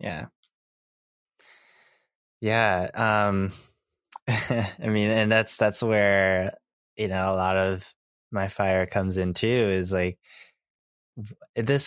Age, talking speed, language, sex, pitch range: 20-39, 110 wpm, English, male, 90-110 Hz